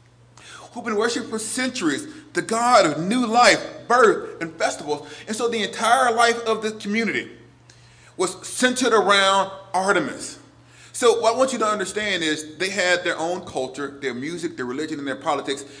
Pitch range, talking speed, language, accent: 140-210 Hz, 170 wpm, English, American